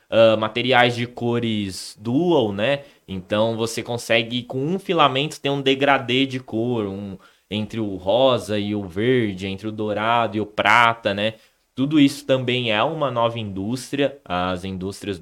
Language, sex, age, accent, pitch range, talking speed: Portuguese, male, 20-39, Brazilian, 95-125 Hz, 160 wpm